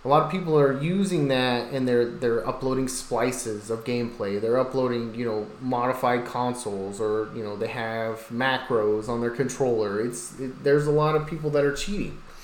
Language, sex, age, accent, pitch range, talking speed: English, male, 30-49, American, 120-140 Hz, 190 wpm